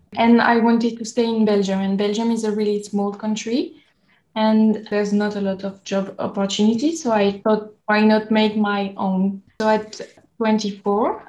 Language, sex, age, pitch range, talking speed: English, female, 10-29, 200-225 Hz, 175 wpm